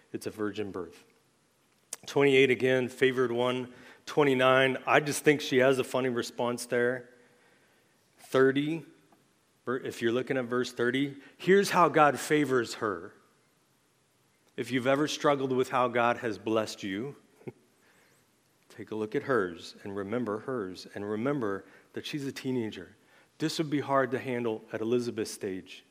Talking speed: 145 wpm